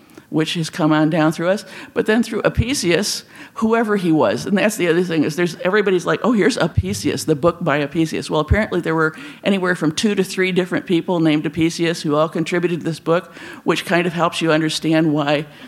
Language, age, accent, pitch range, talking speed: English, 50-69, American, 155-190 Hz, 215 wpm